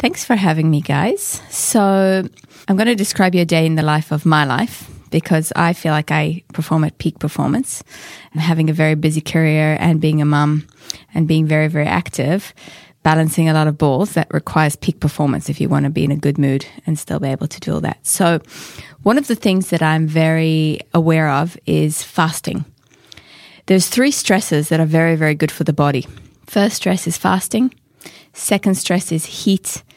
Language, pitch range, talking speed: English, 155-185 Hz, 200 wpm